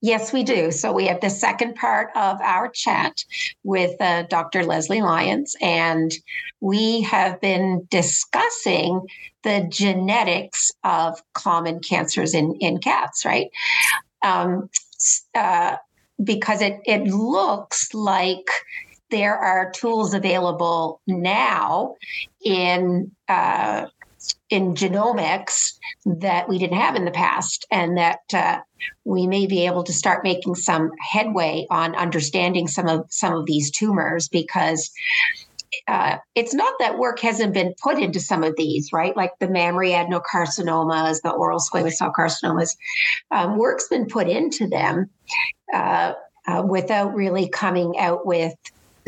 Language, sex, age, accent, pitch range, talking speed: English, female, 50-69, American, 170-215 Hz, 135 wpm